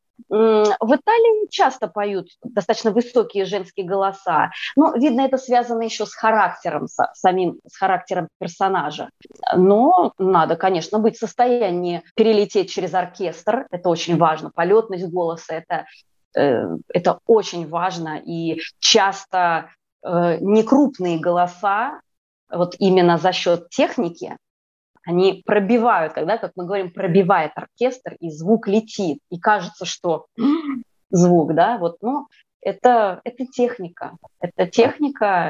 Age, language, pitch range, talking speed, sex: 20-39, Russian, 180-235 Hz, 120 wpm, female